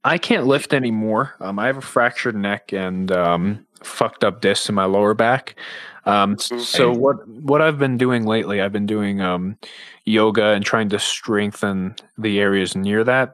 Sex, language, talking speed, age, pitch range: male, English, 180 wpm, 20-39, 95-115 Hz